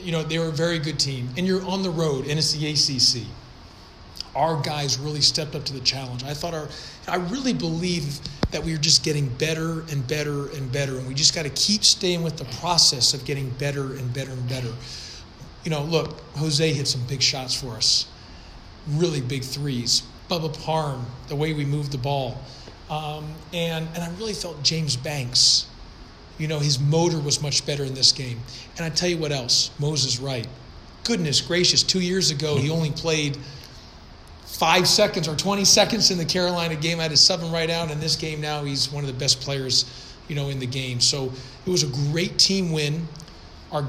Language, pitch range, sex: English, 135-170 Hz, male